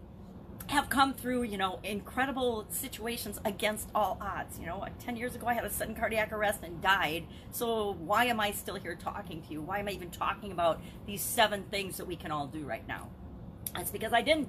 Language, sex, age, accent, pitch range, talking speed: English, female, 40-59, American, 180-240 Hz, 220 wpm